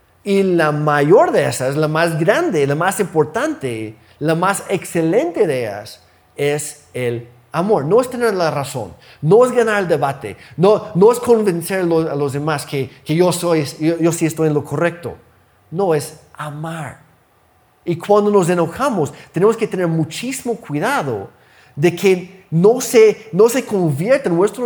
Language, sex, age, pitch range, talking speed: Spanish, male, 30-49, 140-185 Hz, 160 wpm